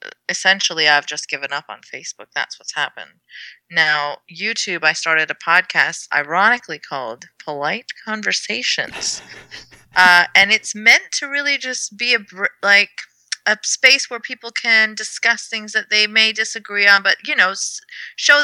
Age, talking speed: 30-49, 155 wpm